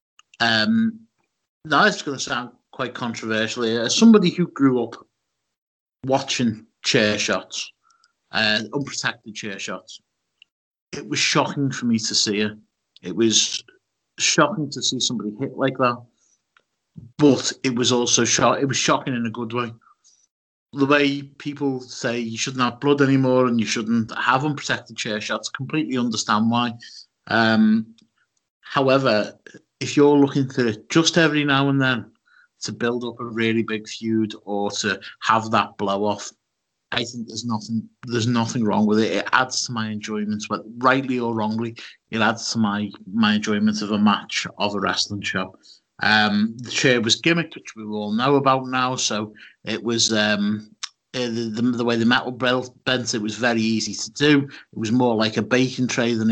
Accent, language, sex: British, English, male